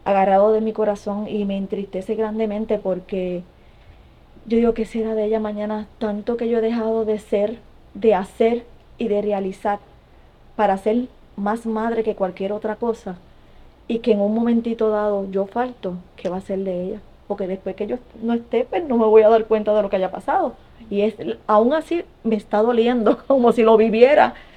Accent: American